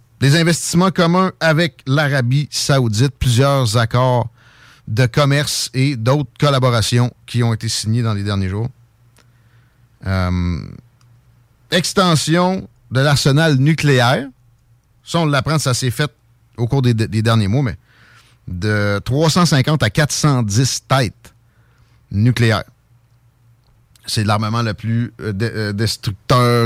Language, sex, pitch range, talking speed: French, male, 115-145 Hz, 115 wpm